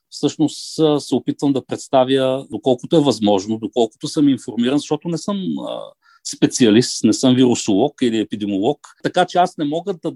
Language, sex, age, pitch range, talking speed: Bulgarian, male, 50-69, 125-165 Hz, 155 wpm